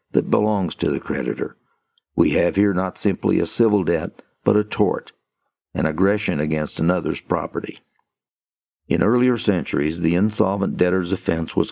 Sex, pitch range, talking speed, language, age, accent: male, 80-100 Hz, 150 wpm, English, 50-69, American